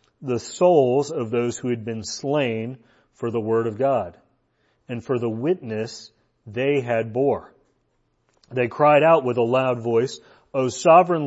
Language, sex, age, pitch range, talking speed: English, male, 40-59, 115-140 Hz, 155 wpm